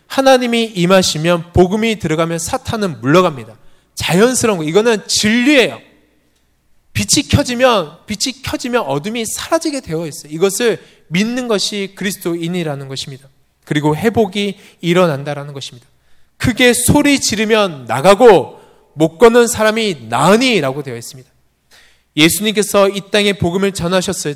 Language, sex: Korean, male